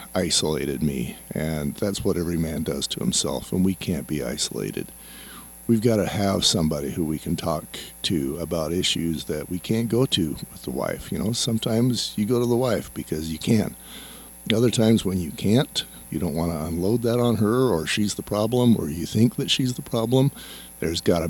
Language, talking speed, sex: English, 205 wpm, male